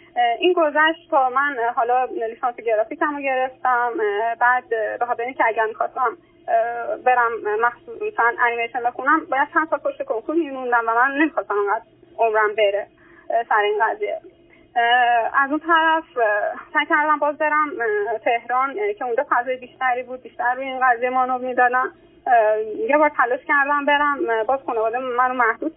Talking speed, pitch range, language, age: 145 wpm, 245-335 Hz, Persian, 20-39